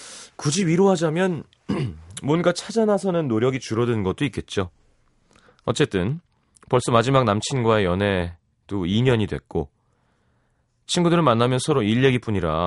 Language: Korean